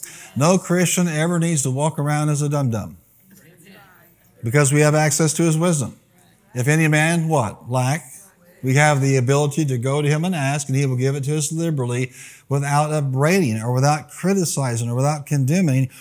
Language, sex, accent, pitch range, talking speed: English, male, American, 130-165 Hz, 180 wpm